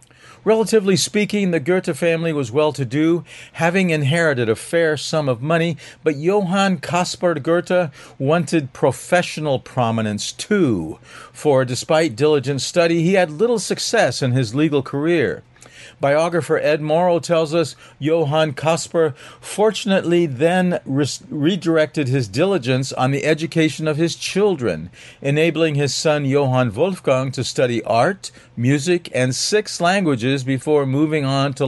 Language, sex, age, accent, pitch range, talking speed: English, male, 50-69, American, 130-170 Hz, 130 wpm